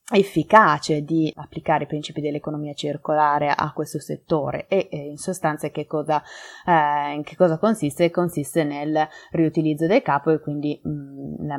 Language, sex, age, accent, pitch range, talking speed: Italian, female, 20-39, native, 150-175 Hz, 135 wpm